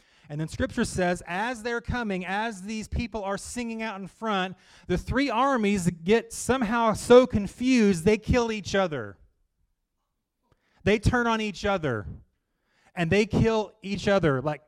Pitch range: 155-210 Hz